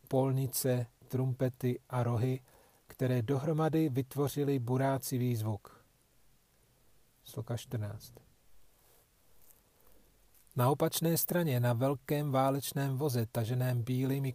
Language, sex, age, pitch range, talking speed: Czech, male, 40-59, 120-135 Hz, 85 wpm